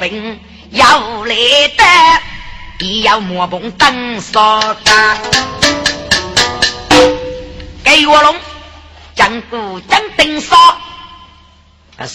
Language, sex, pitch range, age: Chinese, female, 160-235 Hz, 30-49